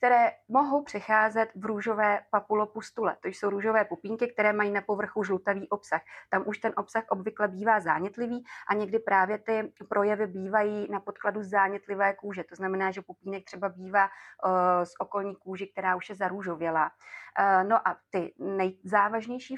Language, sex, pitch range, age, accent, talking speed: Czech, female, 180-205 Hz, 30-49, native, 155 wpm